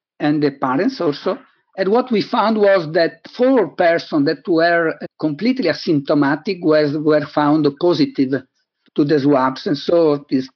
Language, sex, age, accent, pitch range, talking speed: English, male, 50-69, Italian, 145-195 Hz, 150 wpm